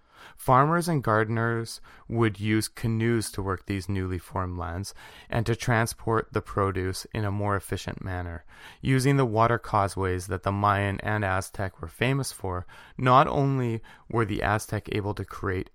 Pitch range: 95-120 Hz